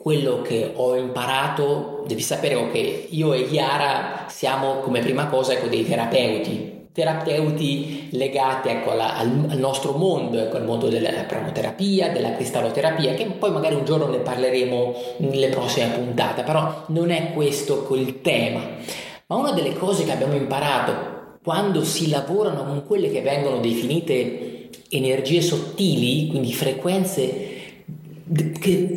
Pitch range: 130-185 Hz